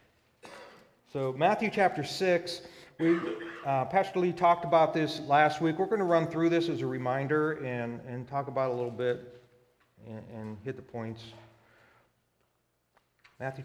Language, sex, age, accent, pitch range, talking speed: English, male, 40-59, American, 120-175 Hz, 160 wpm